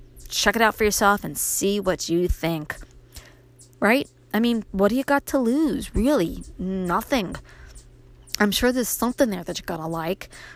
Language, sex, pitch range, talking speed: English, female, 180-235 Hz, 170 wpm